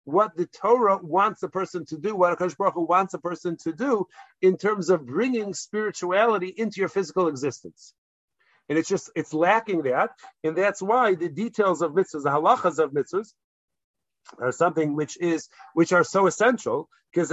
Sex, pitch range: male, 165-210 Hz